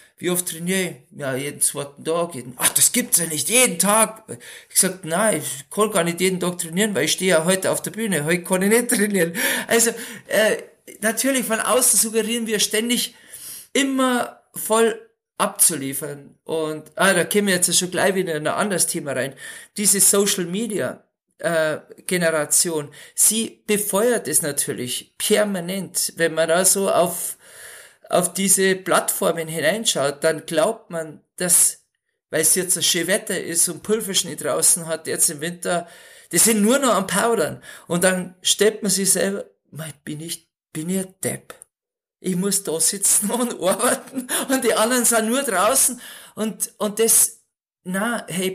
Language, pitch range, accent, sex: German, 165-220 Hz, German, male